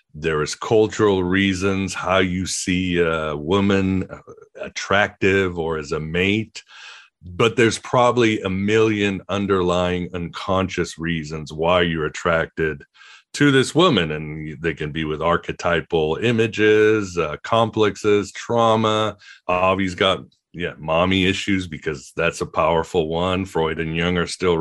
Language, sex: English, male